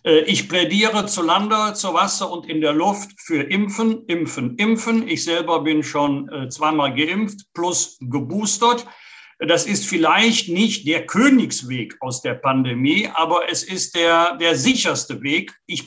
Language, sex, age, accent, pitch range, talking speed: German, male, 60-79, German, 150-205 Hz, 150 wpm